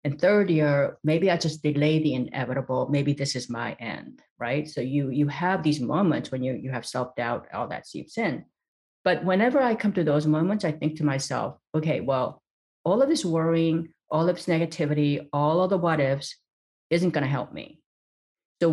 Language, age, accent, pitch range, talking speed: English, 40-59, American, 135-165 Hz, 195 wpm